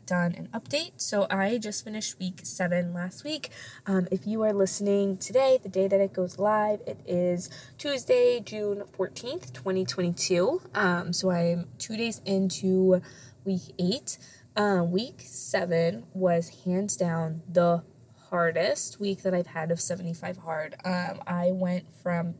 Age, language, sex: 20-39, English, female